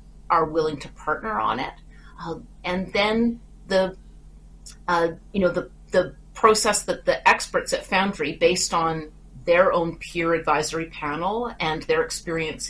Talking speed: 145 wpm